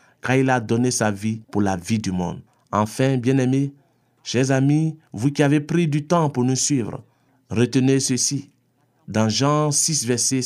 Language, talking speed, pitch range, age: French, 165 wpm, 110-140 Hz, 50-69